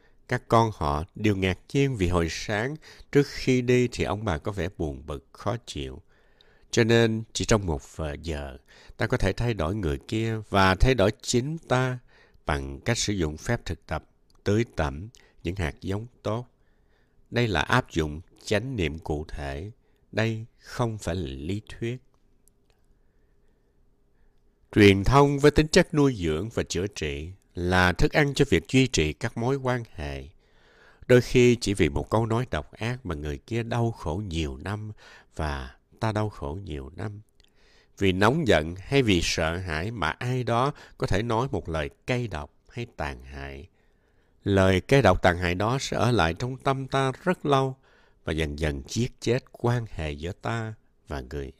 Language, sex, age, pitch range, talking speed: English, male, 60-79, 80-120 Hz, 180 wpm